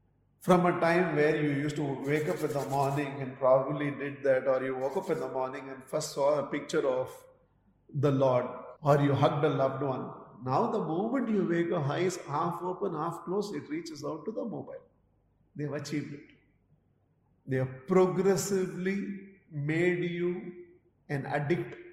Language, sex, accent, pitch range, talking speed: English, male, Indian, 135-170 Hz, 175 wpm